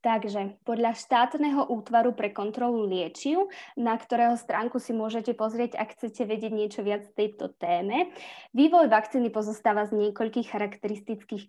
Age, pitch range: 20-39, 205-240 Hz